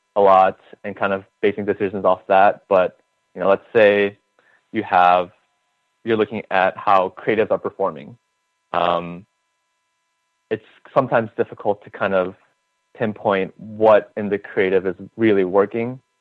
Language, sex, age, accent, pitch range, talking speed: English, male, 20-39, American, 90-110 Hz, 140 wpm